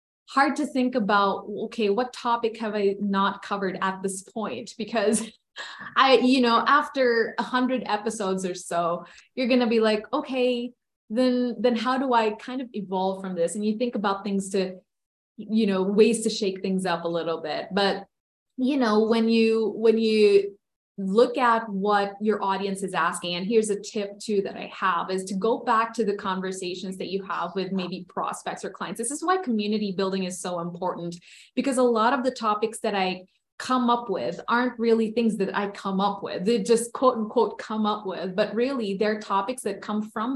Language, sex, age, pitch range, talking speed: English, female, 20-39, 195-230 Hz, 200 wpm